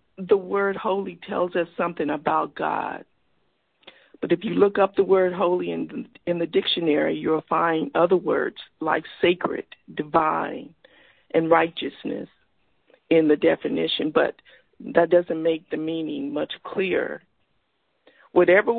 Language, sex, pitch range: English, female, 170-225 Hz